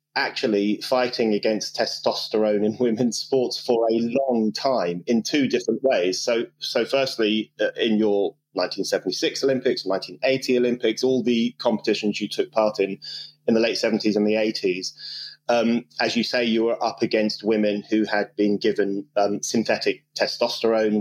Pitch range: 105-130 Hz